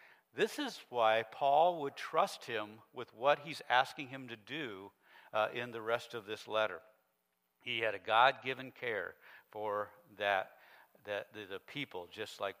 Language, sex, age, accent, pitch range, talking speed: English, male, 60-79, American, 110-135 Hz, 160 wpm